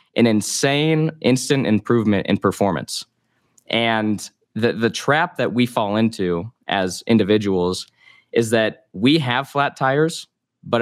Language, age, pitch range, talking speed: English, 20-39, 95-115 Hz, 130 wpm